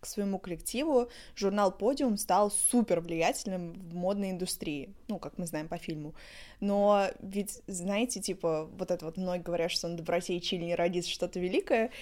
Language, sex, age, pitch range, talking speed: Russian, female, 20-39, 180-225 Hz, 170 wpm